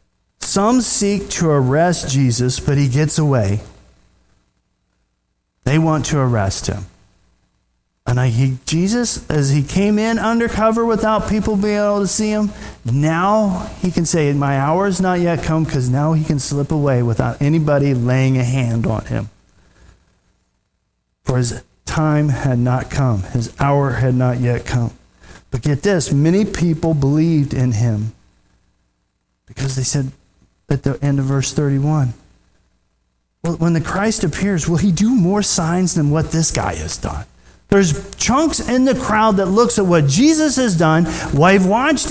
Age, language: 40-59, English